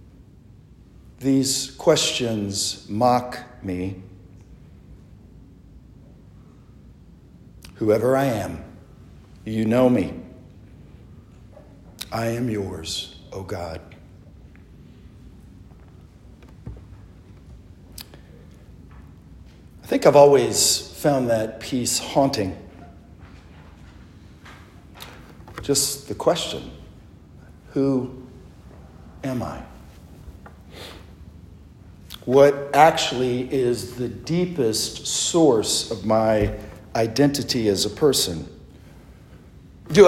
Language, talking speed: English, 65 wpm